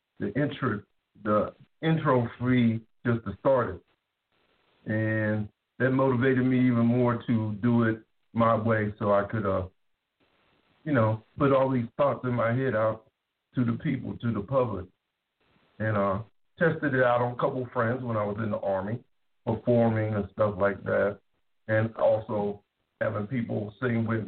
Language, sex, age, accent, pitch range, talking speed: English, male, 50-69, American, 105-125 Hz, 160 wpm